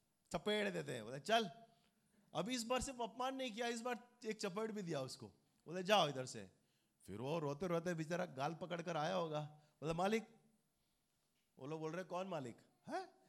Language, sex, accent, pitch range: Hindi, male, native, 140-225 Hz